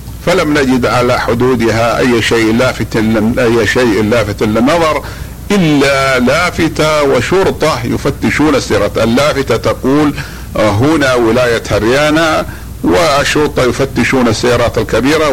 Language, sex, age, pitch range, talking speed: Arabic, male, 50-69, 115-135 Hz, 100 wpm